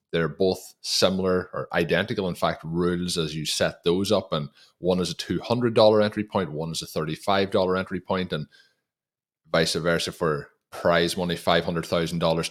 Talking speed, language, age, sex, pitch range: 160 wpm, English, 30-49, male, 85-100 Hz